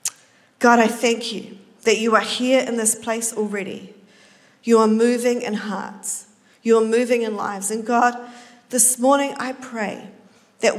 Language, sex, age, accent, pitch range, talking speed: English, female, 40-59, Australian, 215-270 Hz, 160 wpm